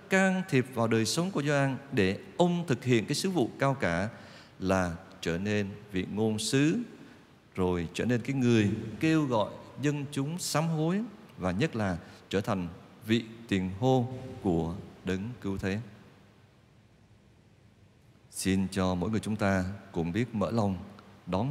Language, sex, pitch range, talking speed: Vietnamese, male, 95-135 Hz, 155 wpm